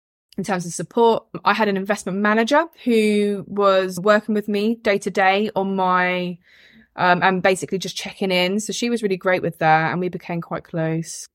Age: 20-39